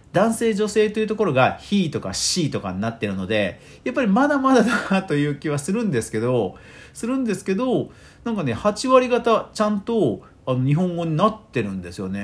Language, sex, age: Japanese, male, 40-59